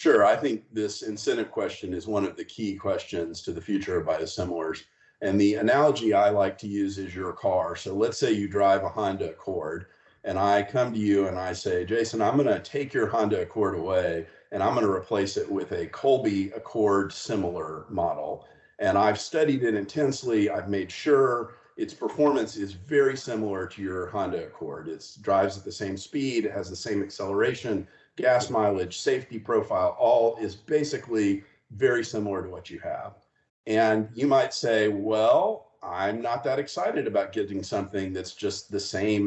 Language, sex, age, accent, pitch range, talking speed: English, male, 50-69, American, 100-135 Hz, 185 wpm